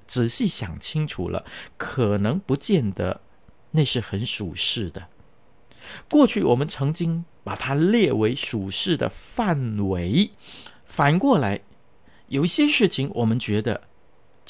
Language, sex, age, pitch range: Chinese, male, 50-69, 100-160 Hz